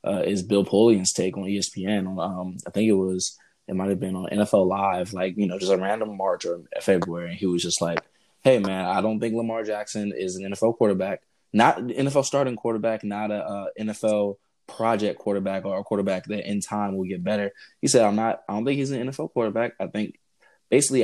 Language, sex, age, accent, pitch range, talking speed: English, male, 20-39, American, 95-115 Hz, 220 wpm